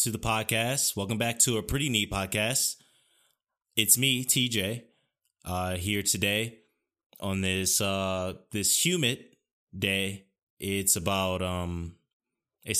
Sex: male